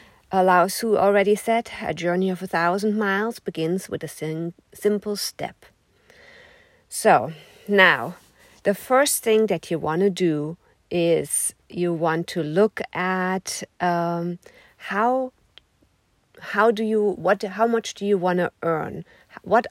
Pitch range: 170-220 Hz